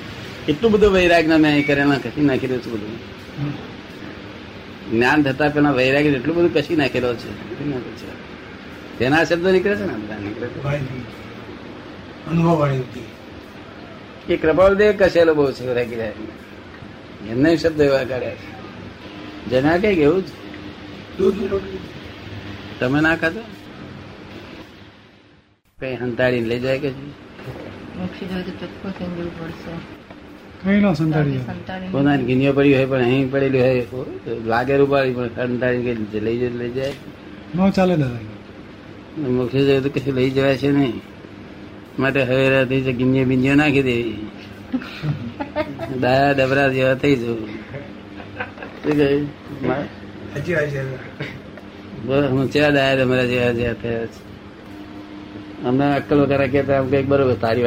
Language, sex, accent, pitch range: Gujarati, male, native, 110-145 Hz